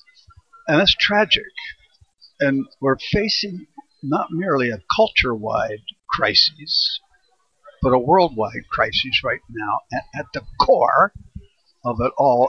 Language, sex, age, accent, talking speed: English, male, 60-79, American, 115 wpm